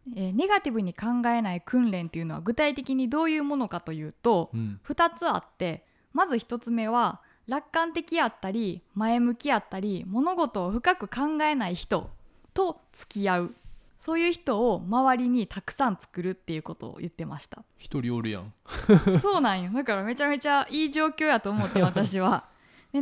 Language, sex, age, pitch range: Japanese, female, 20-39, 190-285 Hz